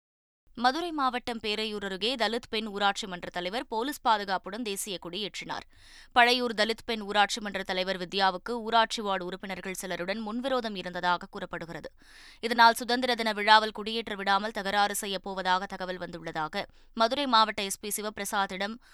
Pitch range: 185-230 Hz